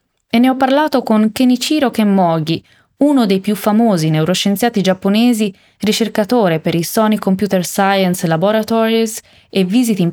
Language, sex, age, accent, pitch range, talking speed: Italian, female, 20-39, native, 175-220 Hz, 130 wpm